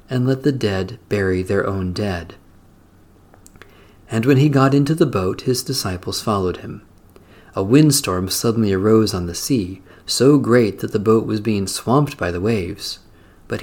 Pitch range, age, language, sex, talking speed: 95-140 Hz, 40-59, English, male, 165 wpm